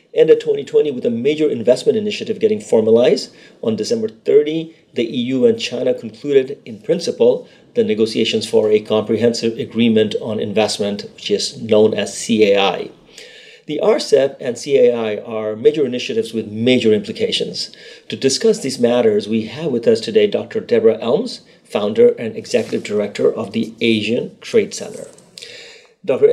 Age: 40-59